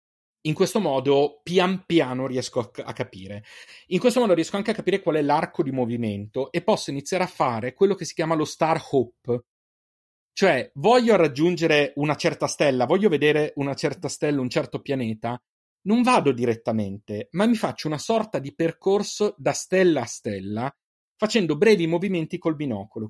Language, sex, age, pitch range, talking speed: Italian, male, 30-49, 115-175 Hz, 170 wpm